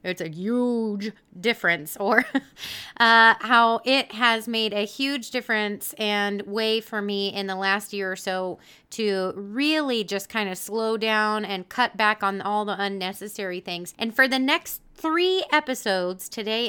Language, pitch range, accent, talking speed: English, 195-240 Hz, American, 160 wpm